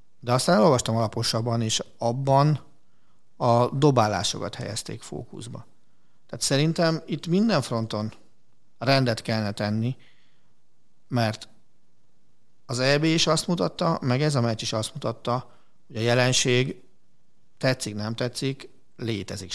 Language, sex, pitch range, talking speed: Hungarian, male, 110-135 Hz, 115 wpm